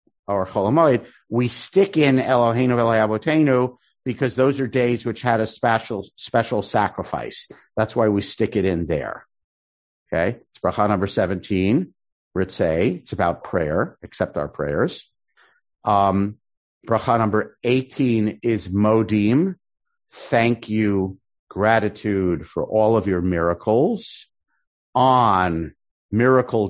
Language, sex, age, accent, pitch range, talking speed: English, male, 50-69, American, 100-125 Hz, 110 wpm